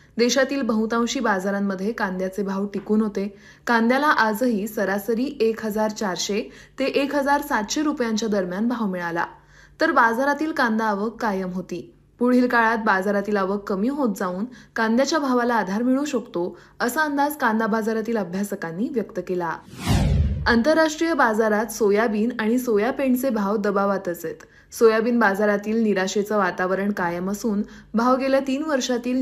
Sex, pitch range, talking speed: female, 200-245 Hz, 125 wpm